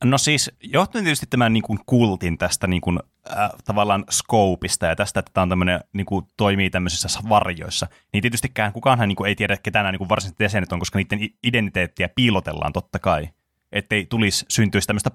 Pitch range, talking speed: 95-115 Hz, 205 wpm